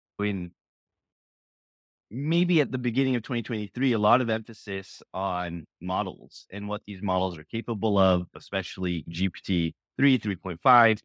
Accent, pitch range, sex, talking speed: American, 95-115 Hz, male, 125 wpm